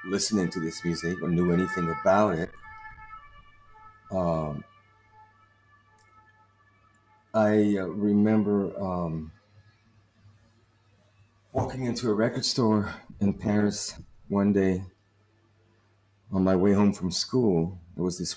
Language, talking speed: English, 100 wpm